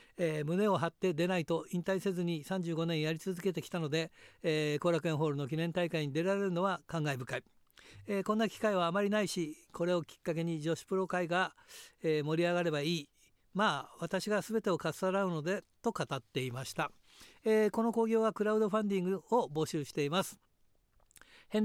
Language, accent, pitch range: Japanese, native, 165-210 Hz